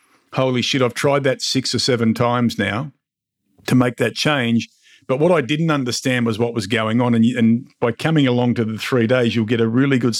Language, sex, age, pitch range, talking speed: English, male, 50-69, 115-140 Hz, 230 wpm